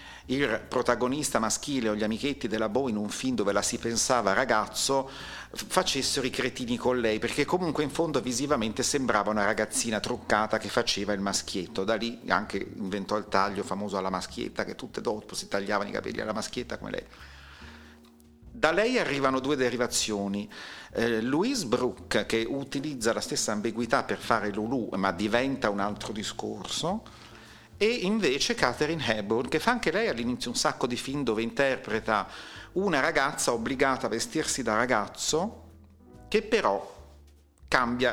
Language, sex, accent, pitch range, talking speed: Italian, male, native, 100-125 Hz, 160 wpm